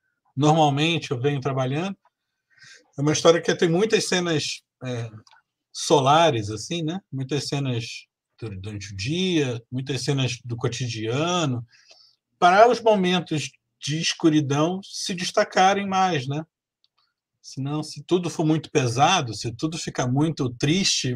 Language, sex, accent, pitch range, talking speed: Portuguese, male, Brazilian, 125-165 Hz, 125 wpm